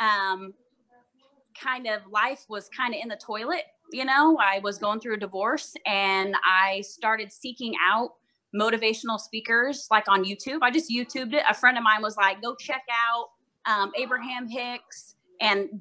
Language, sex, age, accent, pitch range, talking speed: English, female, 20-39, American, 200-255 Hz, 170 wpm